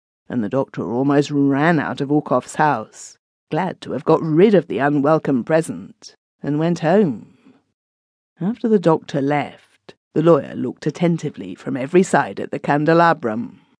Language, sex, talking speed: English, female, 150 wpm